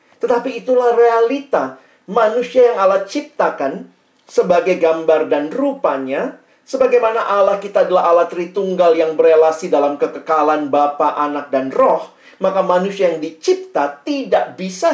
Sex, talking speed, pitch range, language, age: male, 125 wpm, 155-240 Hz, Indonesian, 40-59